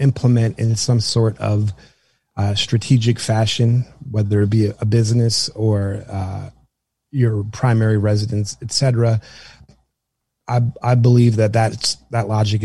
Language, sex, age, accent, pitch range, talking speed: English, male, 30-49, American, 105-125 Hz, 130 wpm